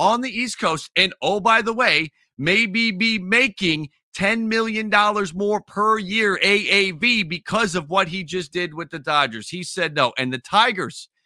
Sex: male